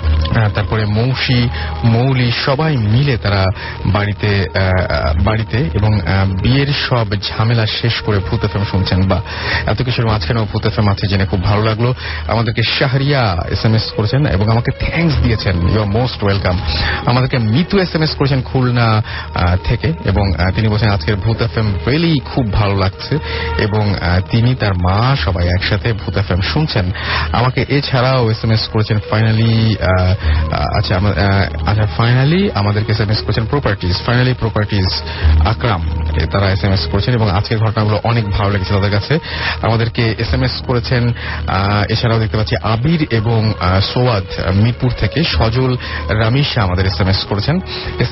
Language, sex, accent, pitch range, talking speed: English, male, Indian, 95-120 Hz, 105 wpm